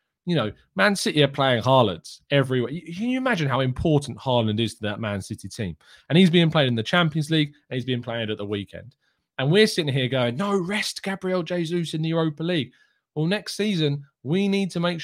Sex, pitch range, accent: male, 110-155 Hz, British